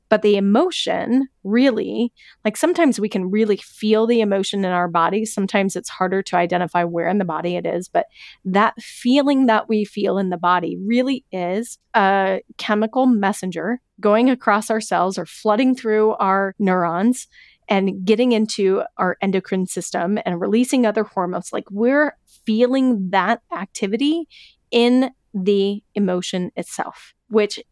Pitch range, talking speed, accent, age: 190-230 Hz, 150 wpm, American, 30-49